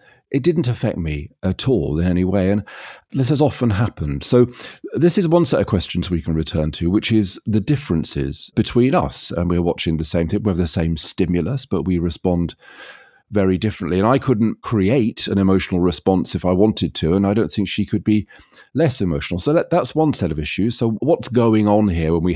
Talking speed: 215 wpm